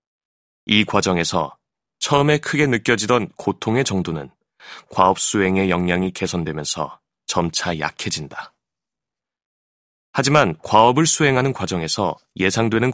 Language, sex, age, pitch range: Korean, male, 30-49, 95-125 Hz